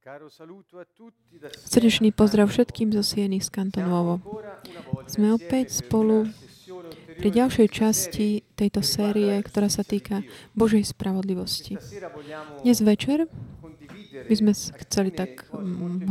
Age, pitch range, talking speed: 30-49, 180-215 Hz, 100 wpm